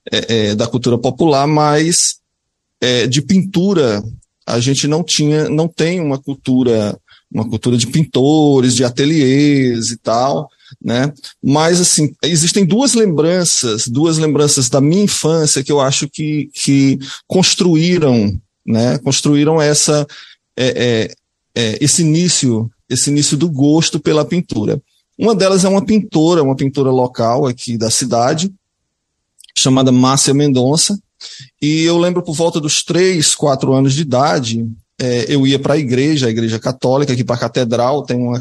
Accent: Brazilian